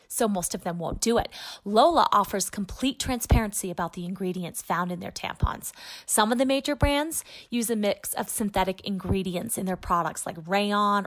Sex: female